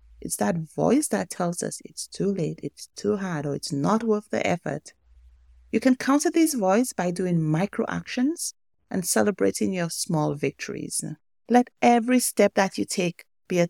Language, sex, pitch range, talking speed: English, female, 155-210 Hz, 175 wpm